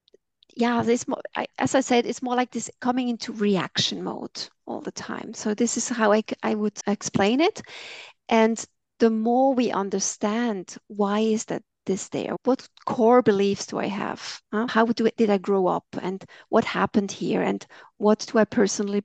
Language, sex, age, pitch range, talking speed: English, female, 40-59, 210-245 Hz, 180 wpm